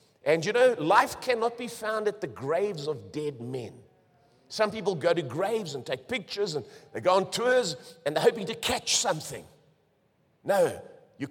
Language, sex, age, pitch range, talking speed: English, male, 50-69, 145-235 Hz, 180 wpm